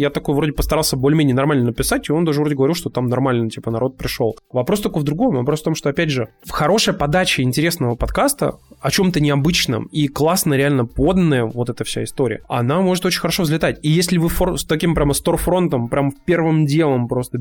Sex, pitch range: male, 130-165 Hz